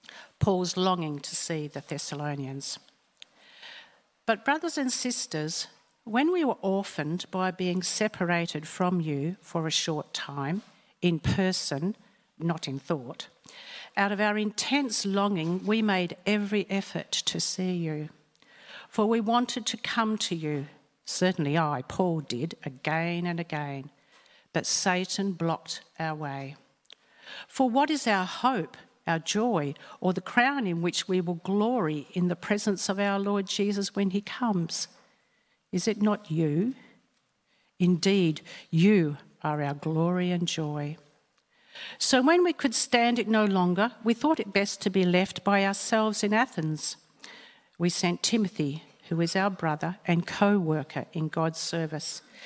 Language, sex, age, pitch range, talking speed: English, female, 60-79, 160-210 Hz, 145 wpm